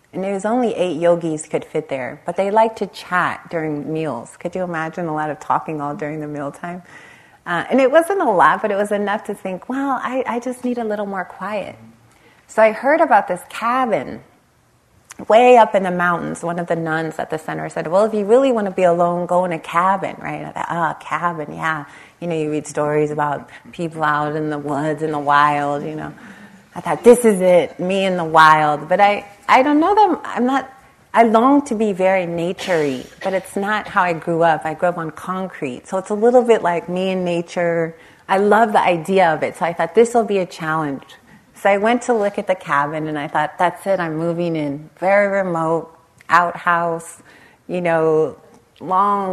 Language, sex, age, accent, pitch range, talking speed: English, female, 30-49, American, 155-200 Hz, 225 wpm